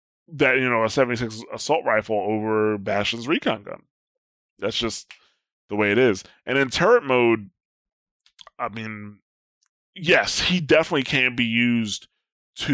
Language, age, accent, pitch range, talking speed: English, 20-39, American, 105-130 Hz, 145 wpm